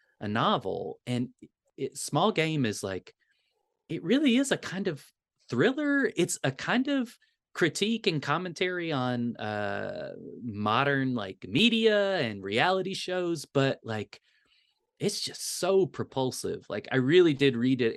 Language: English